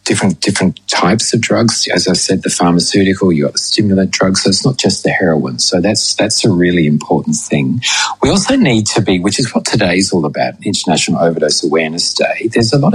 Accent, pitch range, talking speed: Australian, 85-105 Hz, 220 wpm